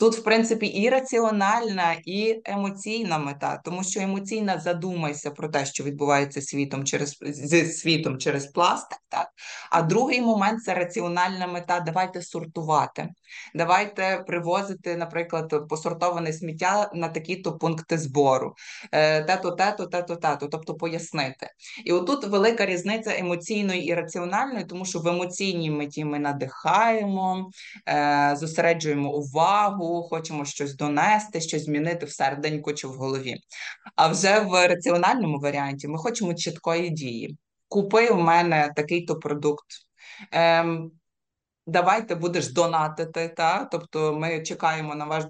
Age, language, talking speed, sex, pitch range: 20-39, Ukrainian, 125 wpm, female, 155-185 Hz